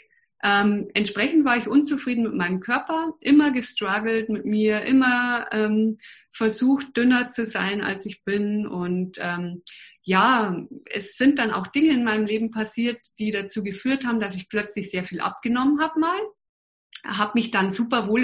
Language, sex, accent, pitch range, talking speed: German, female, German, 200-245 Hz, 165 wpm